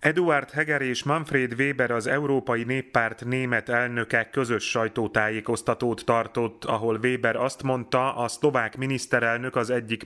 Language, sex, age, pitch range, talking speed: Hungarian, male, 30-49, 110-125 Hz, 130 wpm